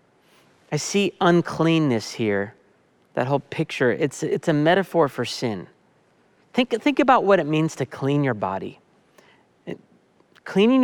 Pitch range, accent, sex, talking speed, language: 140-175 Hz, American, male, 140 wpm, English